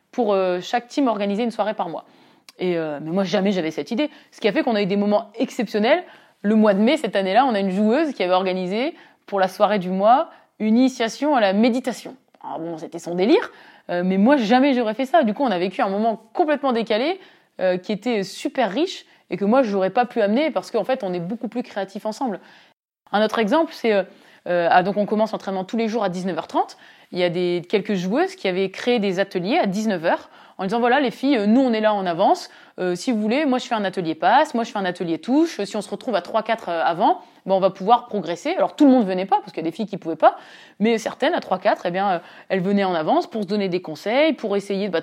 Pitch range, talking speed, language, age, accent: 190-255 Hz, 260 wpm, French, 20-39, French